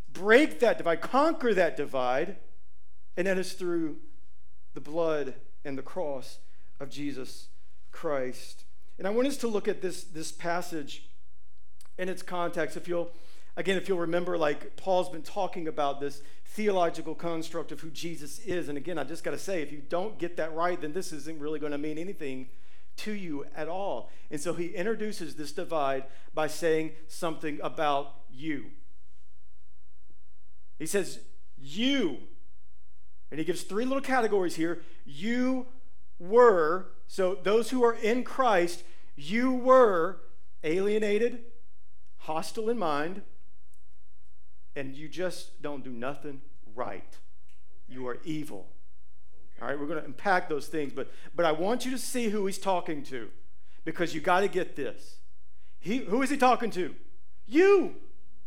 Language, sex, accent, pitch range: English, male, American, 135-185 Hz